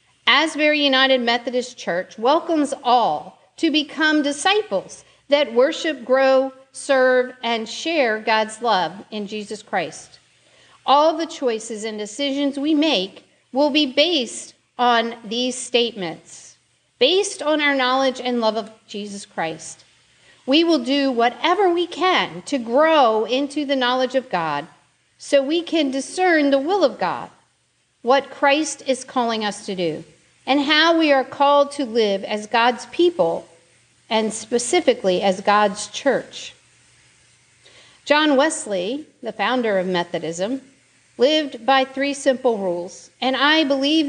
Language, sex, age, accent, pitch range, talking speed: English, female, 50-69, American, 220-290 Hz, 135 wpm